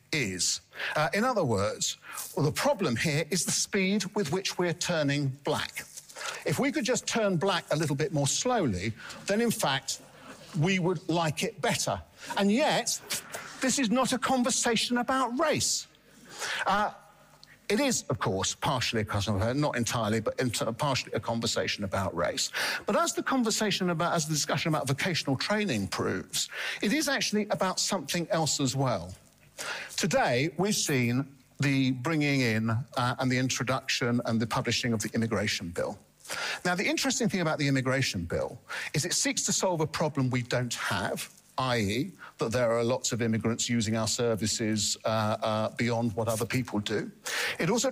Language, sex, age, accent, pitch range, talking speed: English, male, 50-69, British, 120-185 Hz, 170 wpm